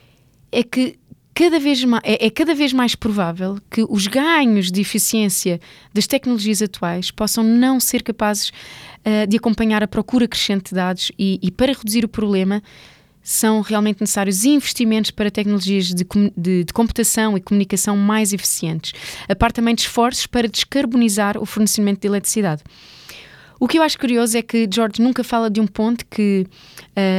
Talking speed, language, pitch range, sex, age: 170 wpm, Portuguese, 195-235 Hz, female, 20-39